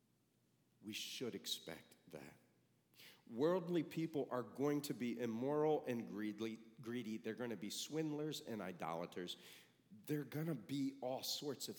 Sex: male